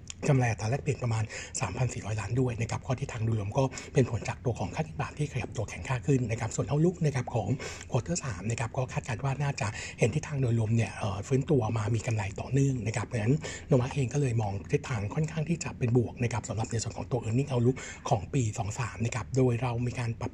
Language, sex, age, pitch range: Thai, male, 60-79, 115-135 Hz